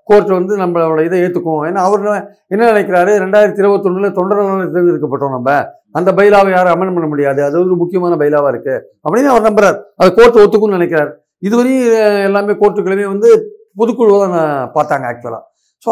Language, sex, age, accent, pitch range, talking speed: Tamil, male, 50-69, native, 170-220 Hz, 160 wpm